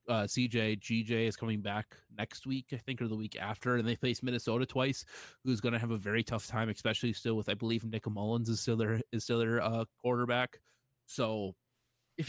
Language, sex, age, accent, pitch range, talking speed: English, male, 20-39, American, 115-140 Hz, 215 wpm